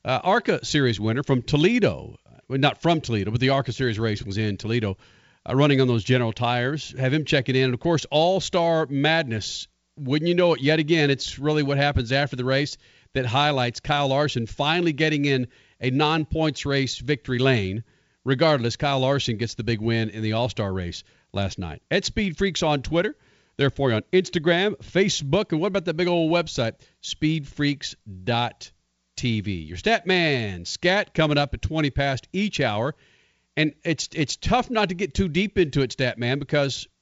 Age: 50-69